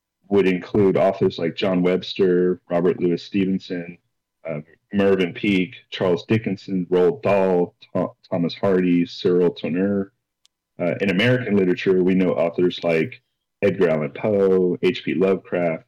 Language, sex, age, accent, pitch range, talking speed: English, male, 40-59, American, 90-105 Hz, 120 wpm